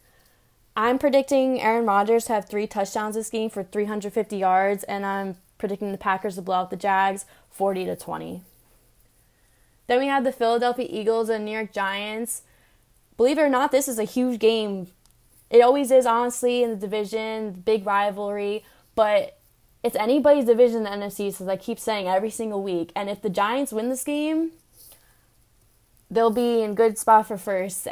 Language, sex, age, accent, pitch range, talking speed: English, female, 10-29, American, 195-235 Hz, 175 wpm